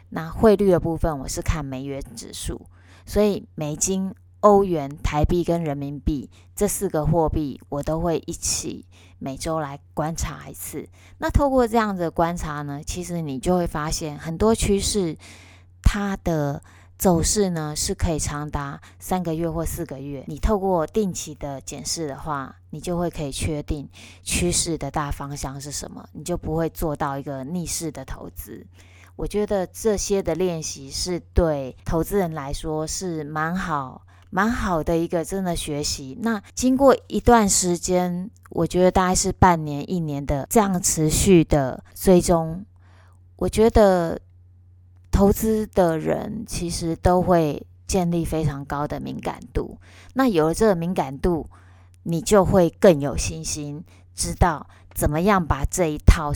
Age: 20-39